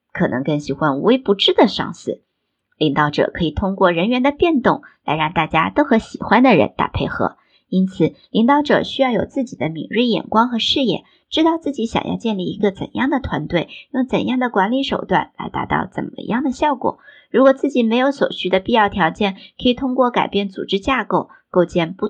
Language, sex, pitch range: Chinese, male, 160-245 Hz